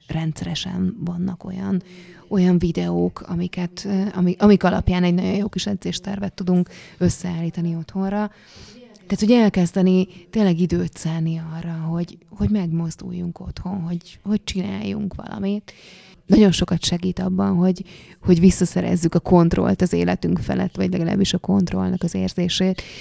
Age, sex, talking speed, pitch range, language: 30-49, female, 130 wpm, 175-190 Hz, Hungarian